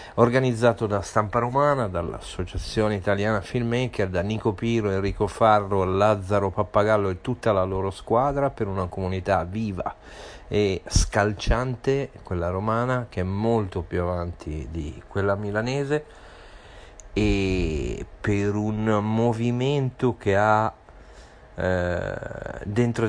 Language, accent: Italian, native